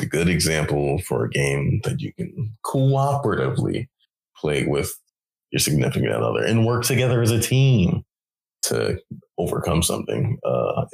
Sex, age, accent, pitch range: male, 20-39, American, 75-100 Hz